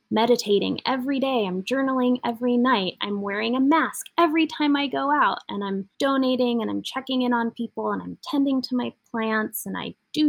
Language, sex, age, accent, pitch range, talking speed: English, female, 20-39, American, 200-245 Hz, 200 wpm